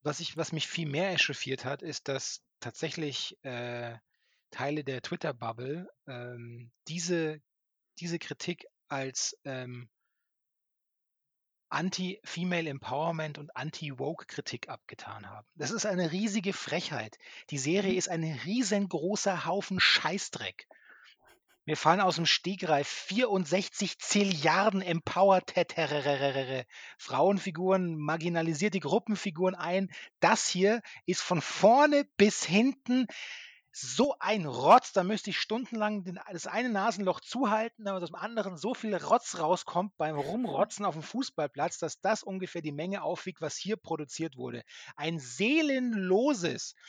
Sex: male